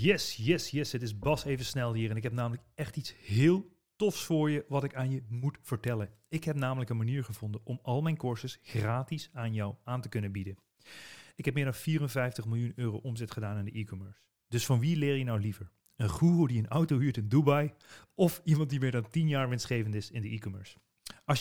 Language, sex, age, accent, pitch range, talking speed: Dutch, male, 40-59, Dutch, 110-140 Hz, 230 wpm